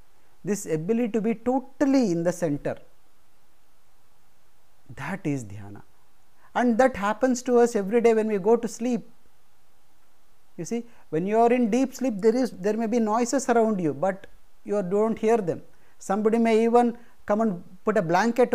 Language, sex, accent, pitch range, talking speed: English, male, Indian, 150-230 Hz, 170 wpm